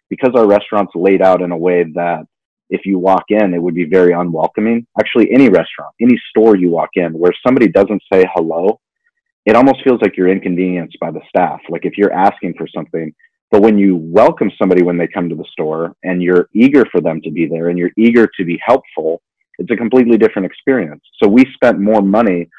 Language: English